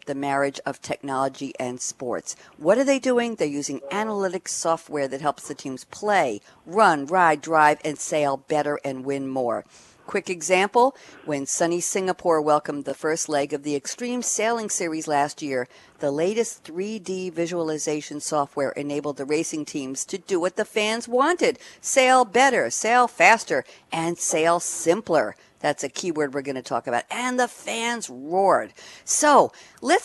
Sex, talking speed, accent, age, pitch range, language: female, 160 wpm, American, 50-69, 145-200 Hz, English